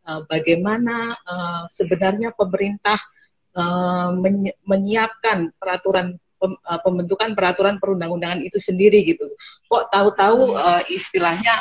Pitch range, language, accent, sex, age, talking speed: 170-200 Hz, Indonesian, native, female, 30-49, 70 wpm